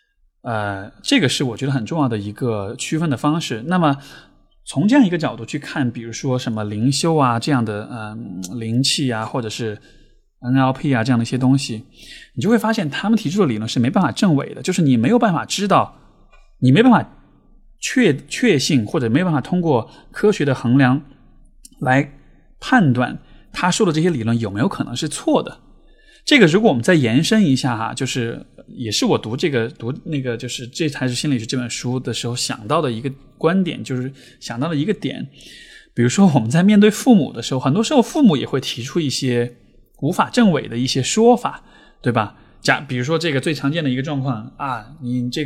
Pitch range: 120-160 Hz